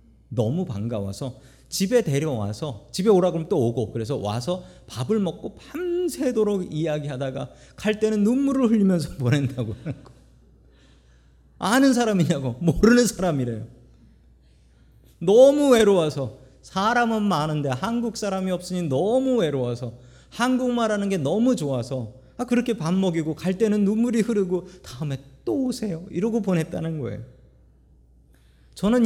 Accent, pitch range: native, 125-200 Hz